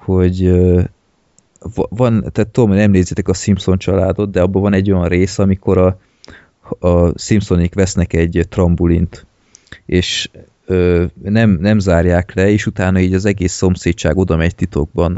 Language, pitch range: Hungarian, 90-100 Hz